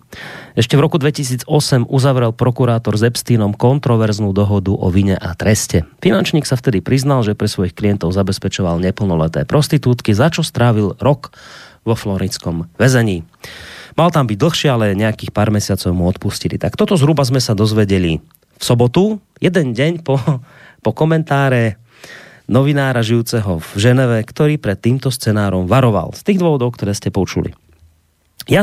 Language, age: Slovak, 30-49